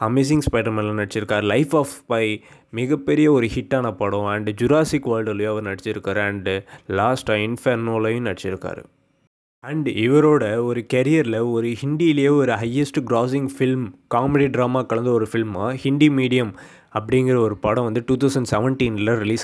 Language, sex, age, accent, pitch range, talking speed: Tamil, male, 20-39, native, 105-135 Hz, 135 wpm